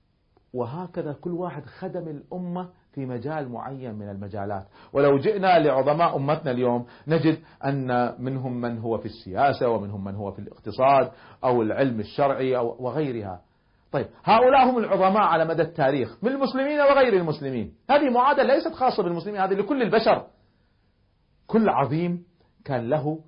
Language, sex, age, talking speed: Arabic, male, 40-59, 140 wpm